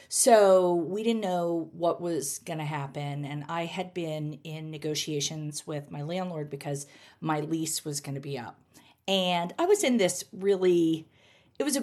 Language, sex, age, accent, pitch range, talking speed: English, female, 40-59, American, 155-205 Hz, 180 wpm